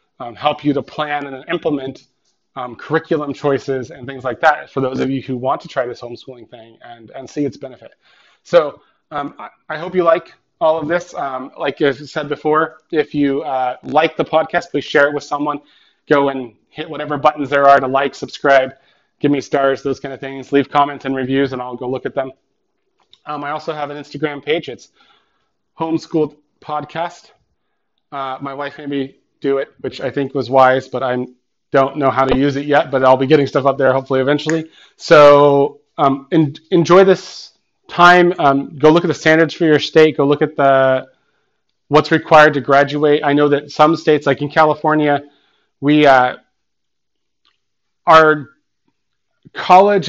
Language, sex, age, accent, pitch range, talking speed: English, male, 30-49, American, 135-155 Hz, 185 wpm